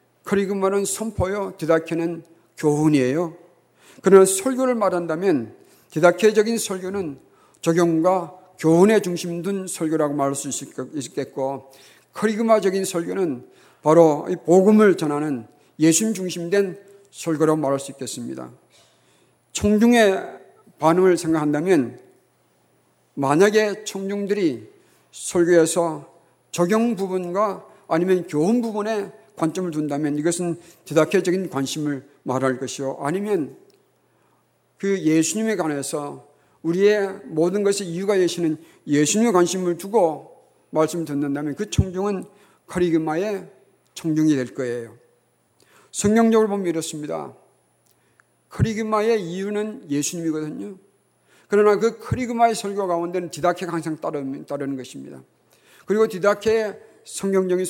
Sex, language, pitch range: male, Korean, 150-200 Hz